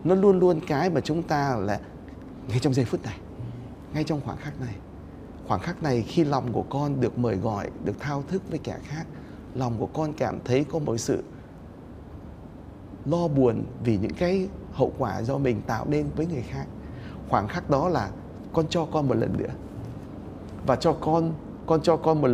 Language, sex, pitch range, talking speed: Vietnamese, male, 105-155 Hz, 195 wpm